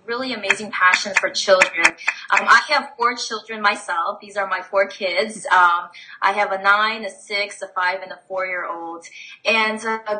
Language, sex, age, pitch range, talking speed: English, female, 20-39, 185-220 Hz, 190 wpm